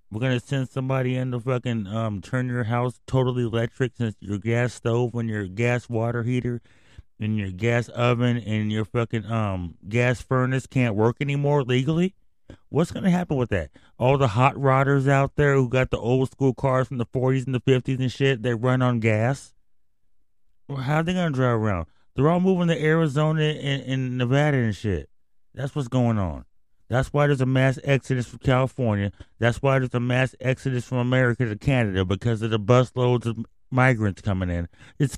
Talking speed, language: 195 wpm, English